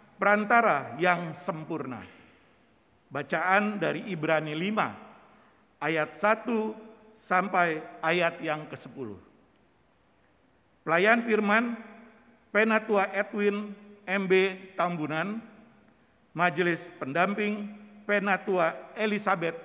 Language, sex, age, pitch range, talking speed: Indonesian, male, 50-69, 170-215 Hz, 70 wpm